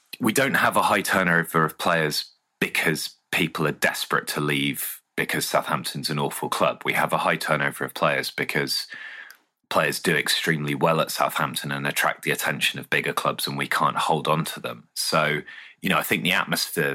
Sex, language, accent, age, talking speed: male, English, British, 30-49, 190 wpm